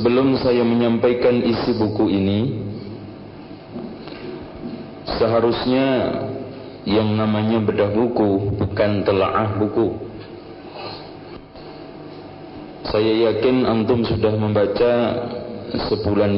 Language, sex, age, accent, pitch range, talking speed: Indonesian, male, 40-59, native, 100-120 Hz, 75 wpm